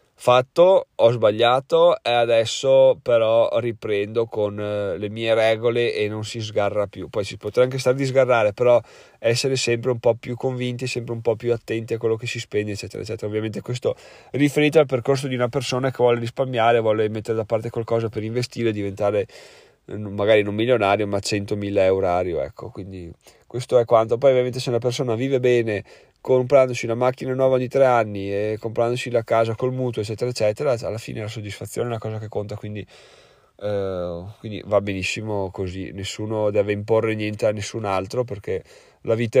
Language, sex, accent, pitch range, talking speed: Italian, male, native, 105-125 Hz, 185 wpm